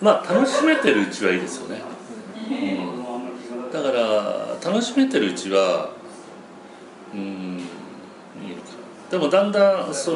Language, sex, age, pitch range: Japanese, male, 40-59, 120-205 Hz